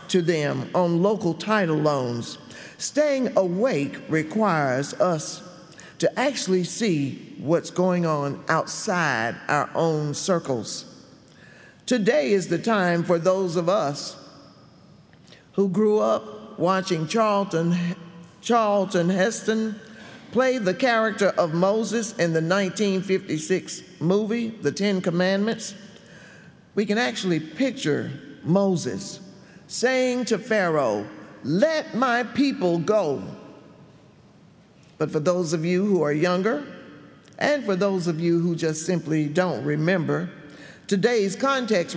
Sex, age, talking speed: male, 50-69, 115 wpm